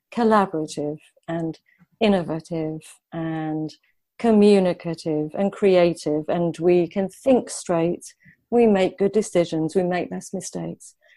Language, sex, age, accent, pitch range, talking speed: English, female, 40-59, British, 160-200 Hz, 105 wpm